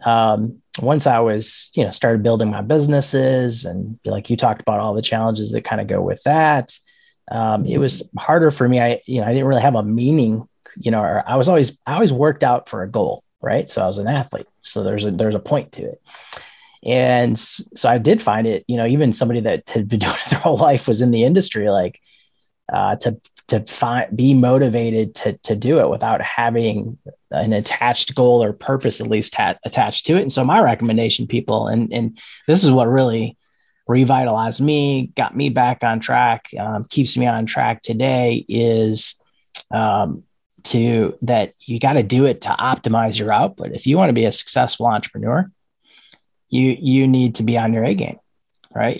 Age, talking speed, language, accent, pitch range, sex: 20-39, 205 wpm, English, American, 110-135 Hz, male